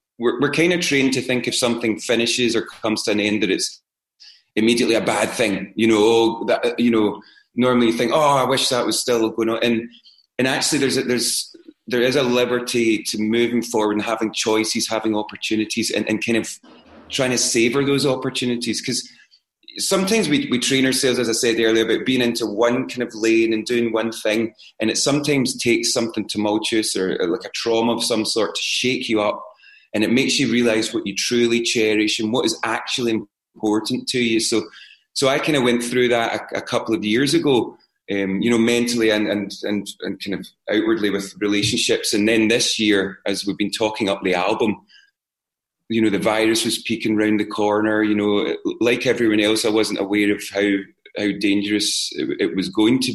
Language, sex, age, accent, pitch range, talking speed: English, male, 30-49, British, 105-125 Hz, 210 wpm